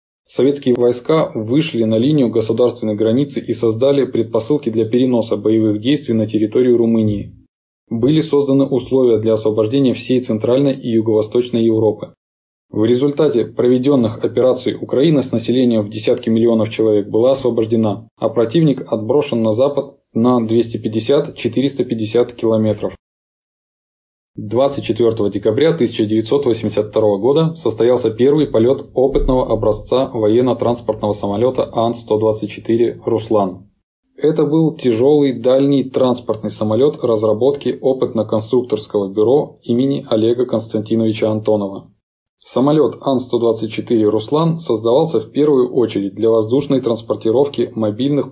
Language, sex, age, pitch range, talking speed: Russian, male, 20-39, 110-130 Hz, 105 wpm